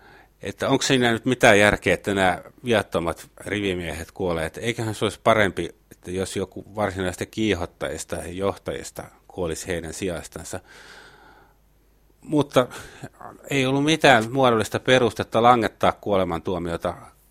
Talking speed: 120 wpm